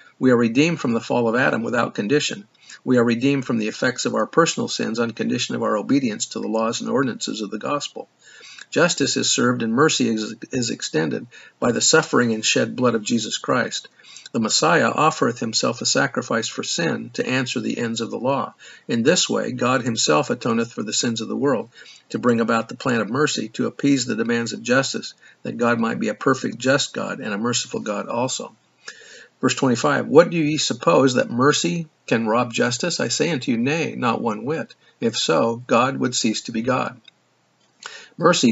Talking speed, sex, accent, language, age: 205 wpm, male, American, English, 50-69